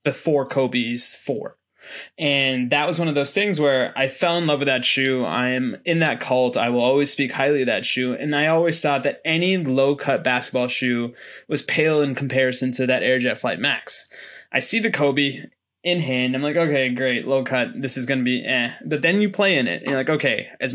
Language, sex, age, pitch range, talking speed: English, male, 20-39, 130-160 Hz, 230 wpm